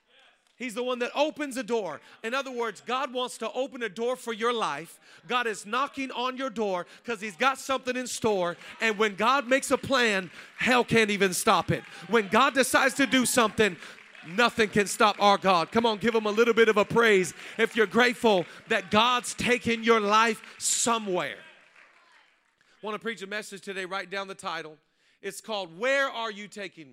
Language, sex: English, male